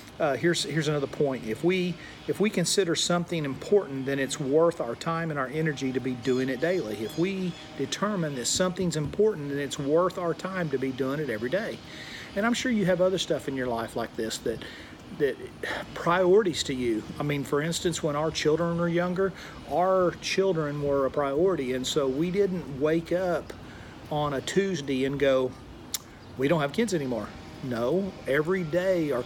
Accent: American